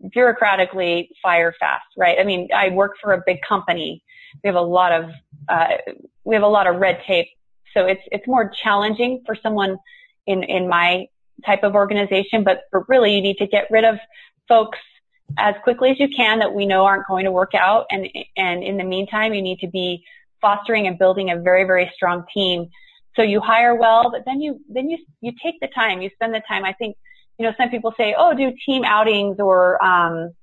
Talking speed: 215 wpm